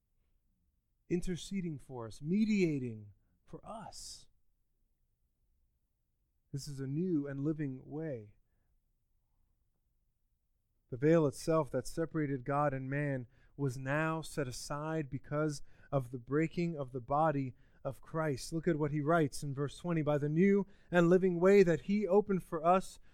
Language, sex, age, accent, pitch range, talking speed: English, male, 30-49, American, 115-165 Hz, 135 wpm